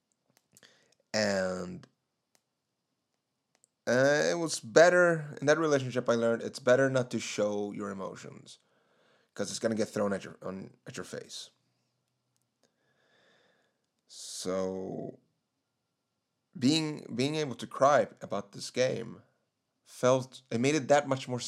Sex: male